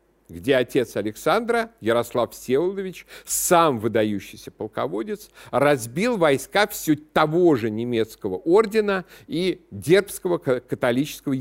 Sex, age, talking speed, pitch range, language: male, 50-69, 95 wpm, 125-195 Hz, Russian